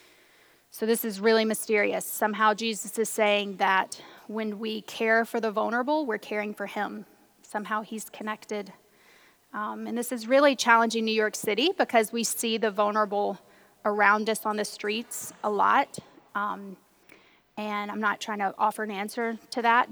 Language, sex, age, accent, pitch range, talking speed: English, female, 20-39, American, 210-240 Hz, 165 wpm